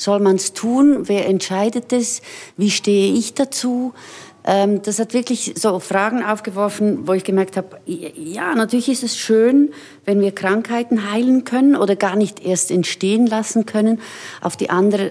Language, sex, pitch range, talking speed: German, female, 185-225 Hz, 165 wpm